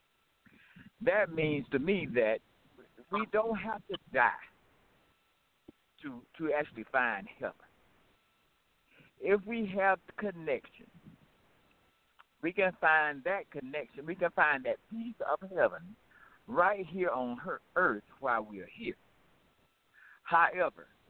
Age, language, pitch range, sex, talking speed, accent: 60-79, English, 135-200 Hz, male, 120 wpm, American